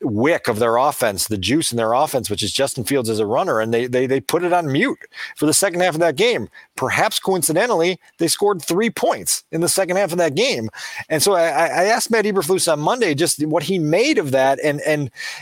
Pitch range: 140-190 Hz